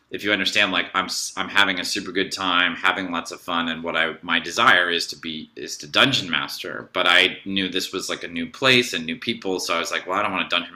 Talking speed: 275 wpm